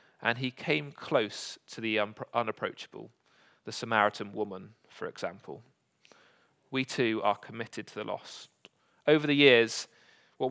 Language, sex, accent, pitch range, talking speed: English, male, British, 110-140 Hz, 130 wpm